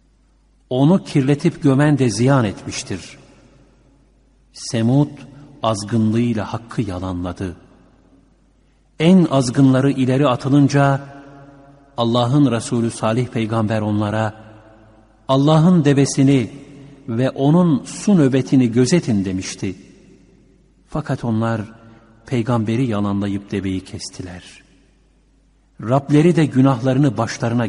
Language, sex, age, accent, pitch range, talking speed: Turkish, male, 60-79, native, 105-140 Hz, 80 wpm